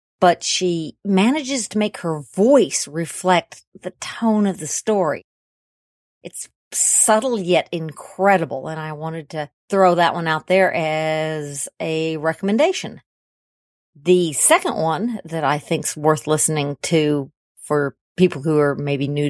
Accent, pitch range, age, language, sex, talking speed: American, 155-195 Hz, 50-69, English, female, 135 wpm